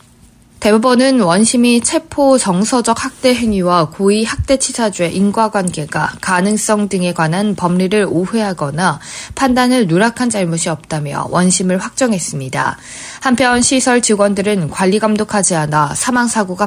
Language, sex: Korean, female